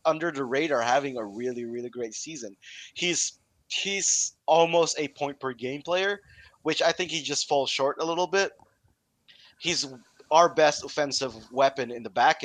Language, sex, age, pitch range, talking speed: English, male, 20-39, 120-150 Hz, 170 wpm